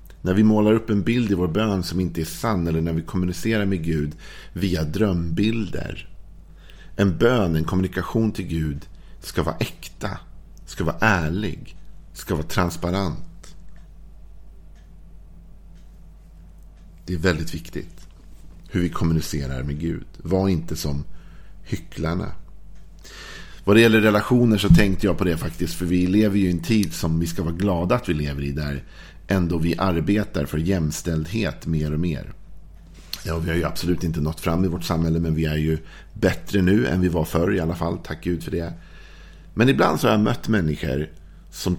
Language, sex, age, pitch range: Swedish, male, 50-69, 80-95 Hz